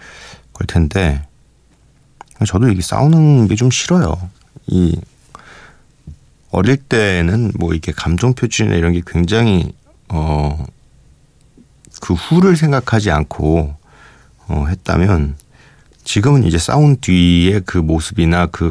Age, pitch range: 40-59, 85-110 Hz